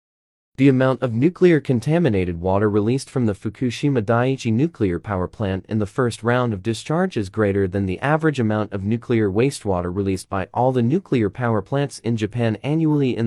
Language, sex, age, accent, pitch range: Chinese, male, 30-49, American, 105-155 Hz